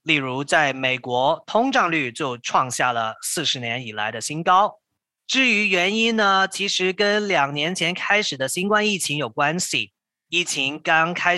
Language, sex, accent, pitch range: Chinese, male, native, 135-190 Hz